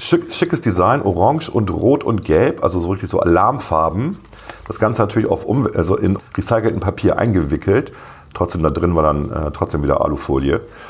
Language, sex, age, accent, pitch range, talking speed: German, male, 40-59, German, 95-125 Hz, 170 wpm